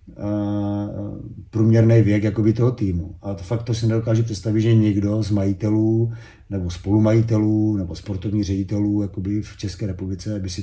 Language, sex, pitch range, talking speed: Slovak, male, 95-110 Hz, 150 wpm